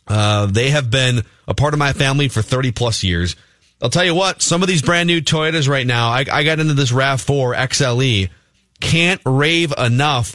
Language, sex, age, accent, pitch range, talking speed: English, male, 30-49, American, 115-150 Hz, 190 wpm